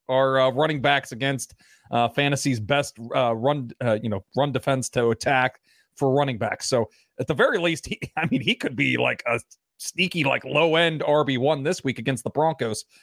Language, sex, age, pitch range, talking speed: English, male, 30-49, 140-180 Hz, 195 wpm